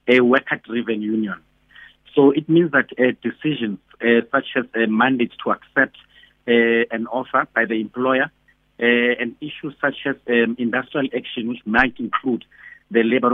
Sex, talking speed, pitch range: male, 155 wpm, 115-135 Hz